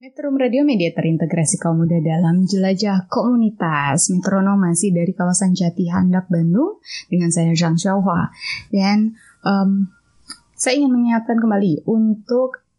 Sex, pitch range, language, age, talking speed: female, 175-230 Hz, Indonesian, 20-39, 120 wpm